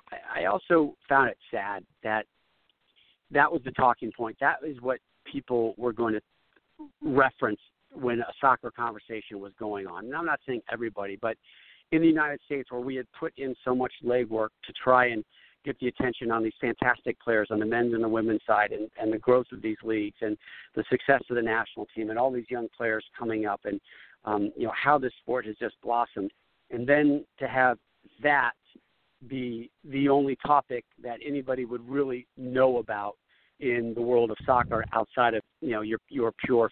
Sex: male